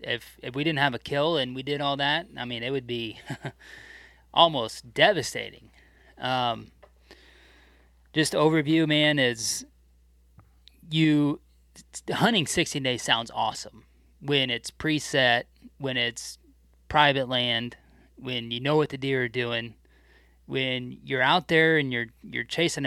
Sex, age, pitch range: male, 20-39, 115-145 Hz